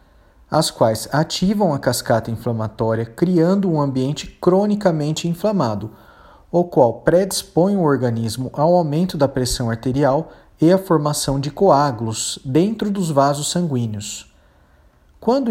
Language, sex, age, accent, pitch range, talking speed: Portuguese, male, 40-59, Brazilian, 120-170 Hz, 120 wpm